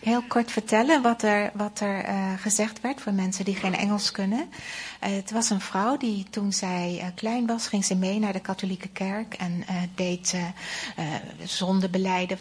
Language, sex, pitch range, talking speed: Dutch, female, 185-215 Hz, 190 wpm